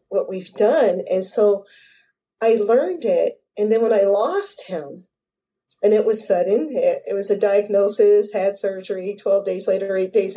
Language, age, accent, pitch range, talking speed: English, 40-59, American, 185-245 Hz, 175 wpm